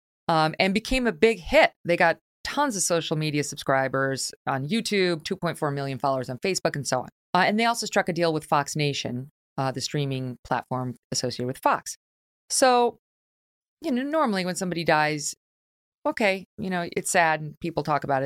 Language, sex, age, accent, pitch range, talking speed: English, female, 30-49, American, 140-190 Hz, 185 wpm